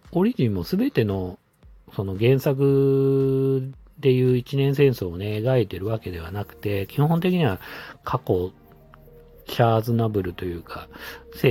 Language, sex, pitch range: Japanese, male, 95-135 Hz